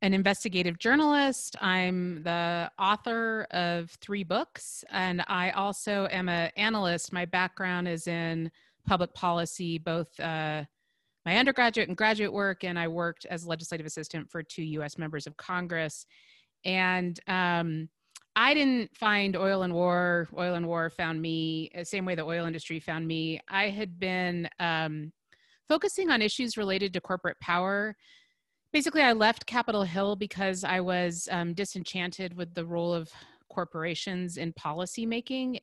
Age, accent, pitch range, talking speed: 30-49, American, 170-200 Hz, 150 wpm